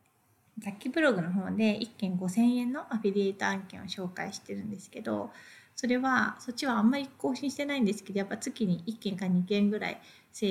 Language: Japanese